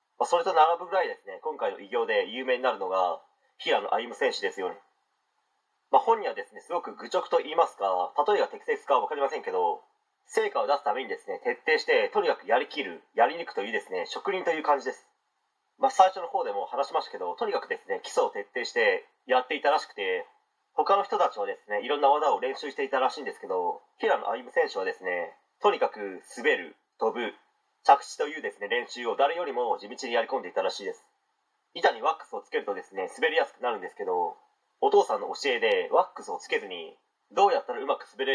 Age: 40-59